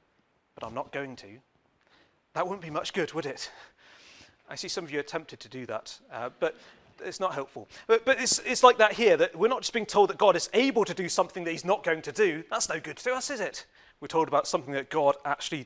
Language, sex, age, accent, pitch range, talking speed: English, male, 40-59, British, 135-210 Hz, 255 wpm